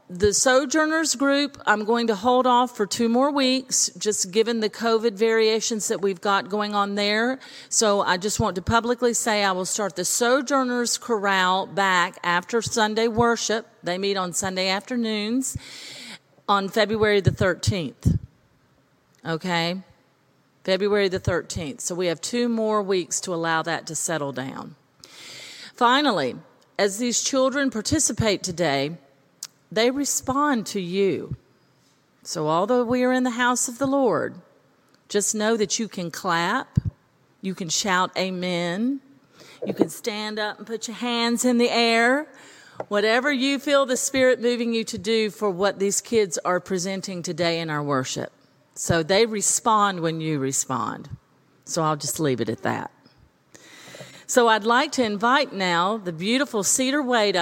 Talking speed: 155 wpm